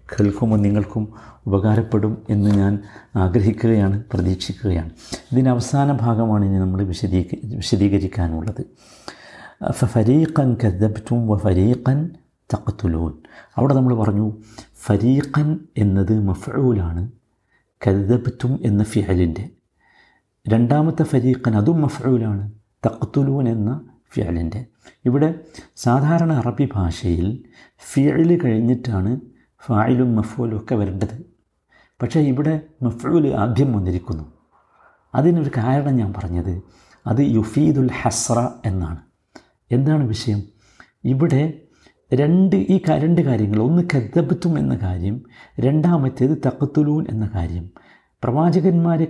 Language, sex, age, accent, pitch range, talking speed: Malayalam, male, 50-69, native, 105-140 Hz, 90 wpm